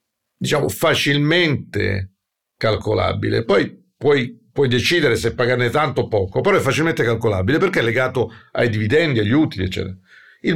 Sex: male